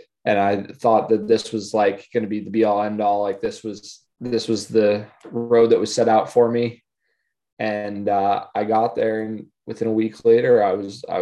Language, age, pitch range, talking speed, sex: English, 20-39, 100-115 Hz, 220 wpm, male